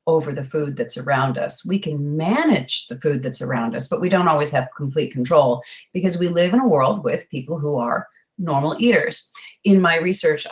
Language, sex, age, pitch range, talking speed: English, female, 40-59, 140-190 Hz, 205 wpm